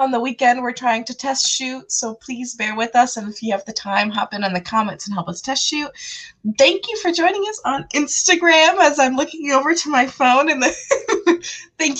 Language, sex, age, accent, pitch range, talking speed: English, female, 20-39, American, 225-320 Hz, 225 wpm